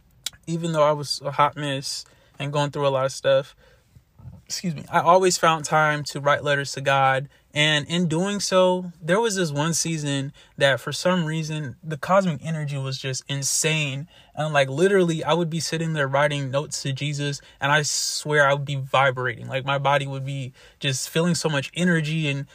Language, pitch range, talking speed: English, 135-155 Hz, 195 wpm